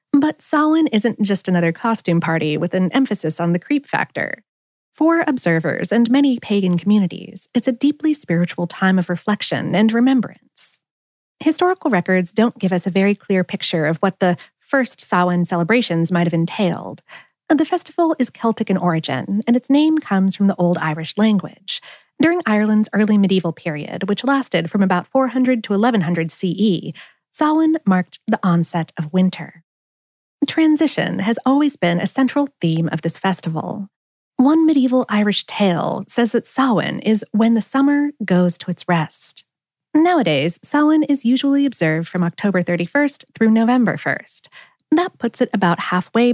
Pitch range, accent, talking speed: 175-260 Hz, American, 160 wpm